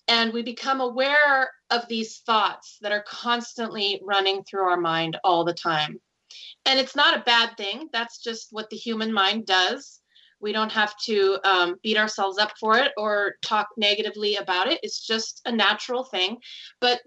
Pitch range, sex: 190-240 Hz, female